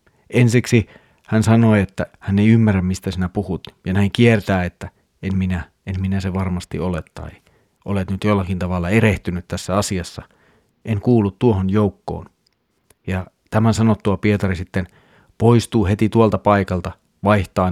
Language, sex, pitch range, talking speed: Finnish, male, 90-115 Hz, 145 wpm